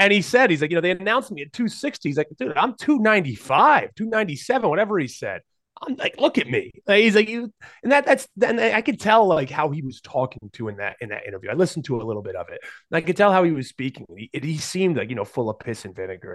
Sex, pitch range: male, 135-210 Hz